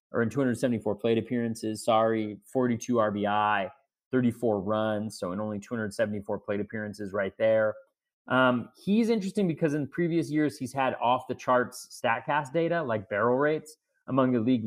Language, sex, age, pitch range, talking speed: English, male, 30-49, 110-140 Hz, 150 wpm